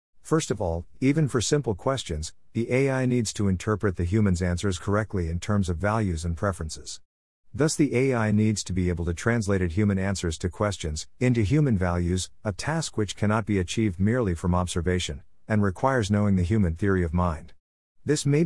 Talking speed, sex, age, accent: 190 wpm, male, 50-69, American